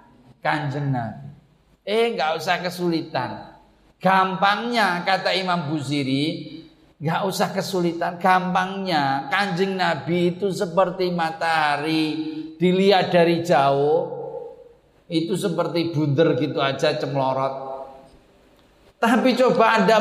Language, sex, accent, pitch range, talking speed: Indonesian, male, native, 140-185 Hz, 95 wpm